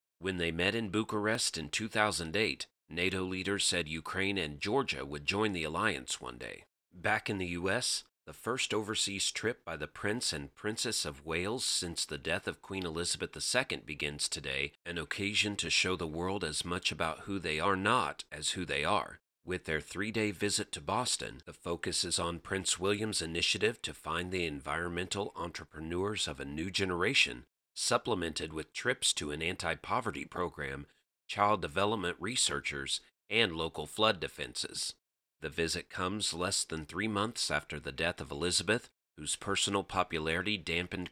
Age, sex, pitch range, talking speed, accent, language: 40-59, male, 80-100 Hz, 165 wpm, American, English